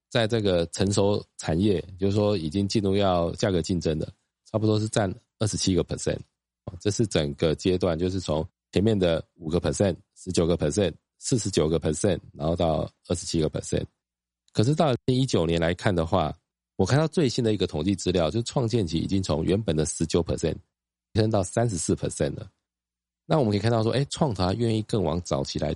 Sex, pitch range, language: male, 80-110 Hz, Chinese